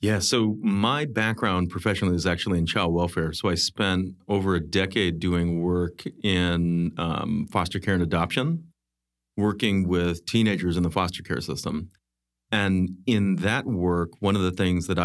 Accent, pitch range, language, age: American, 85-100 Hz, English, 30-49